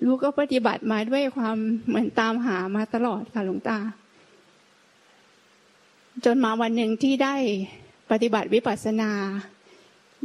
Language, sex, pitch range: Thai, female, 210-245 Hz